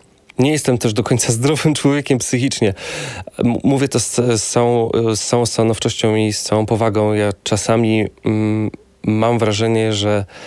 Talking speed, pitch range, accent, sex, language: 130 wpm, 100-115 Hz, native, male, Polish